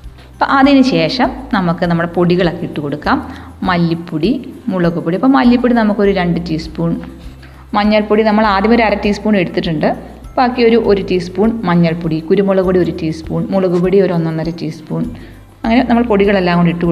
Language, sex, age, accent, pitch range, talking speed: Malayalam, female, 30-49, native, 175-230 Hz, 140 wpm